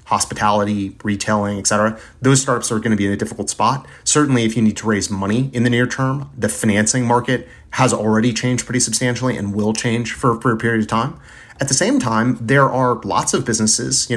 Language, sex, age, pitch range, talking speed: English, male, 30-49, 105-120 Hz, 210 wpm